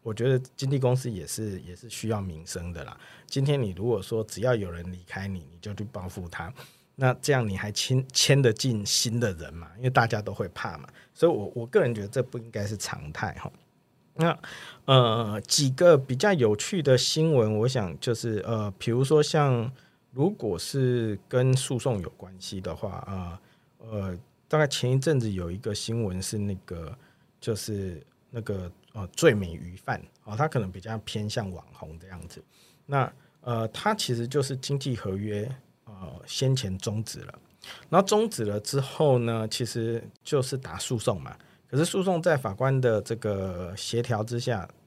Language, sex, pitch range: Chinese, male, 100-130 Hz